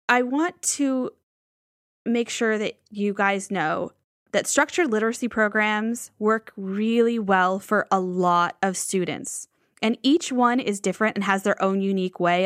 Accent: American